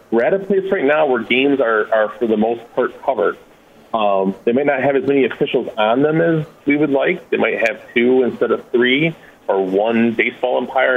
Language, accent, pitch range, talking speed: English, American, 110-145 Hz, 220 wpm